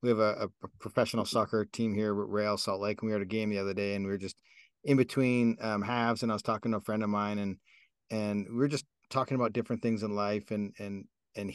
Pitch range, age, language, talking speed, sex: 110-130 Hz, 40-59, English, 270 wpm, male